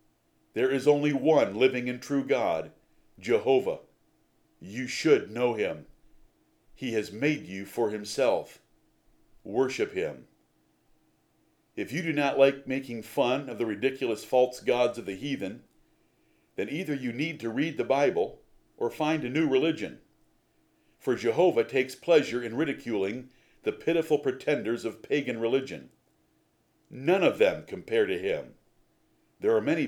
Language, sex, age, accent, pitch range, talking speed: English, male, 50-69, American, 125-170 Hz, 140 wpm